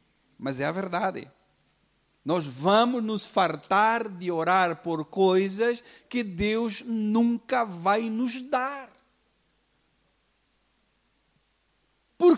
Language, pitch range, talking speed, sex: Portuguese, 160-225 Hz, 90 wpm, male